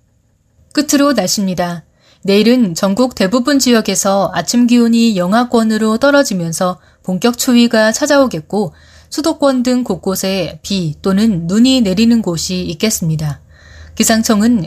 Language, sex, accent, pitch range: Korean, female, native, 180-240 Hz